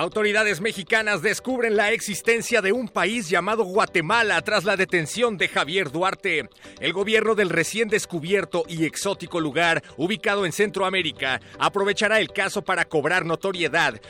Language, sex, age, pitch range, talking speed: Spanish, male, 40-59, 170-215 Hz, 140 wpm